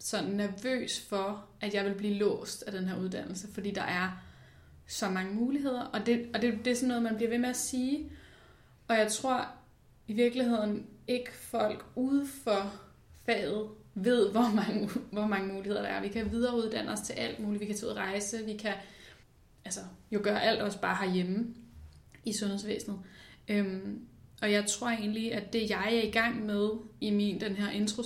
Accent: native